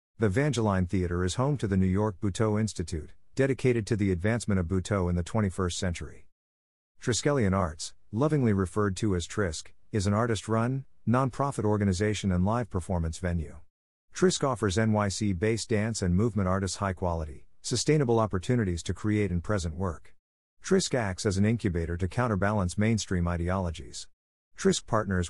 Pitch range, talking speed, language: 90-115 Hz, 150 wpm, English